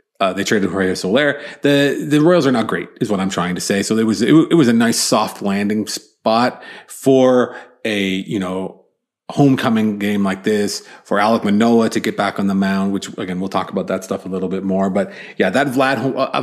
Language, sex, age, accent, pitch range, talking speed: English, male, 30-49, American, 100-130 Hz, 225 wpm